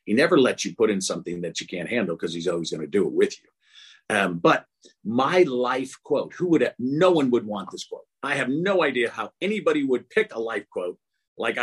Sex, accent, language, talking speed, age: male, American, English, 235 wpm, 50-69